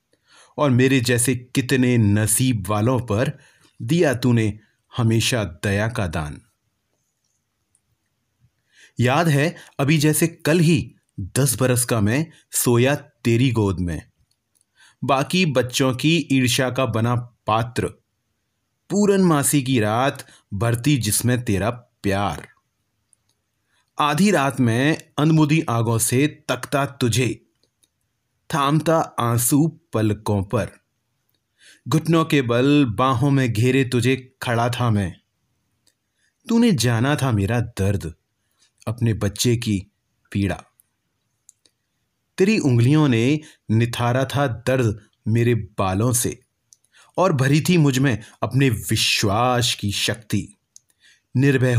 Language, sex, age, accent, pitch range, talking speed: Hindi, male, 30-49, native, 105-135 Hz, 105 wpm